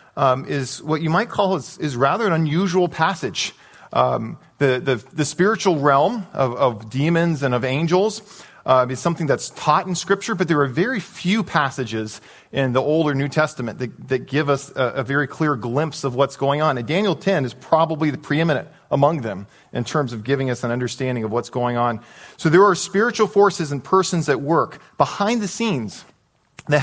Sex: male